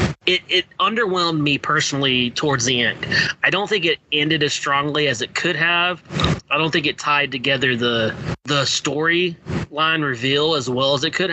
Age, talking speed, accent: 20-39, 180 wpm, American